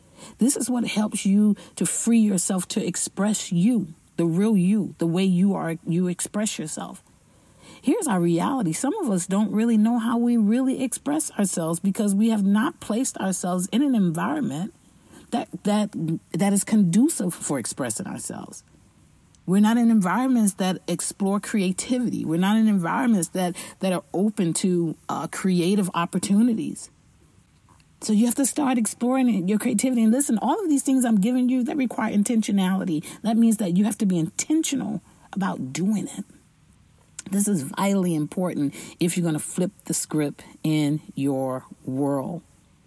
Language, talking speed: English, 160 wpm